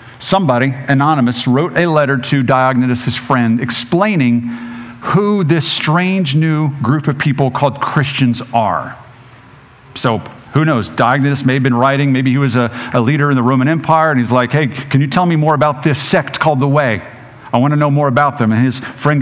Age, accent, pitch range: 50-69, American, 130-185 Hz